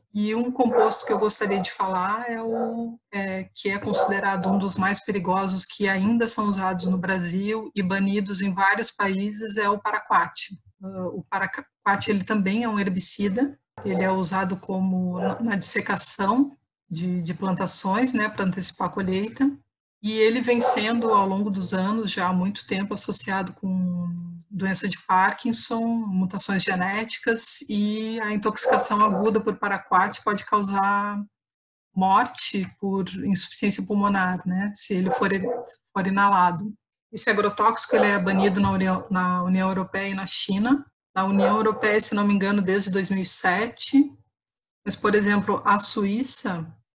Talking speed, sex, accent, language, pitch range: 145 wpm, female, Brazilian, Portuguese, 190-215 Hz